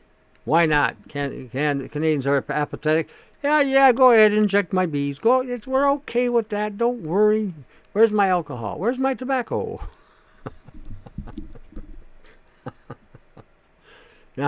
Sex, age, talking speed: male, 60-79, 115 wpm